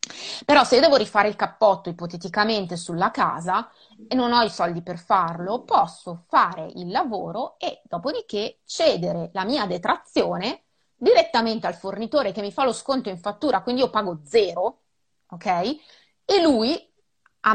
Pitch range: 185-255 Hz